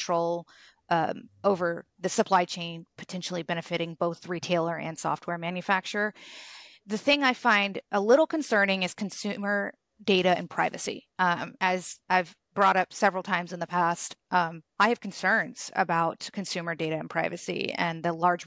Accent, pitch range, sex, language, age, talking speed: American, 170-195 Hz, female, English, 30-49, 155 wpm